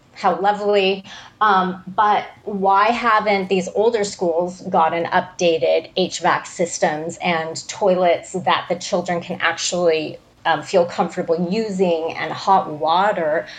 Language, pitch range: English, 175-205 Hz